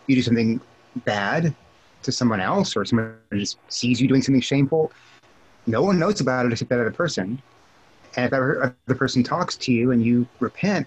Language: English